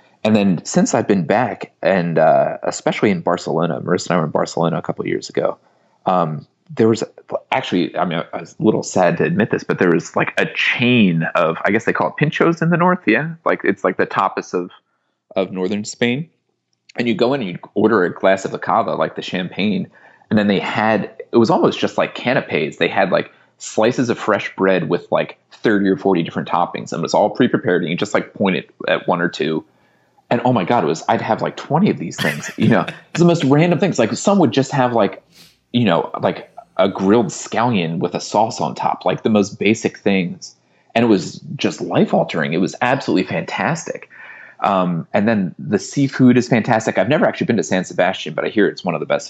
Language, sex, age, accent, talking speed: English, male, 30-49, American, 230 wpm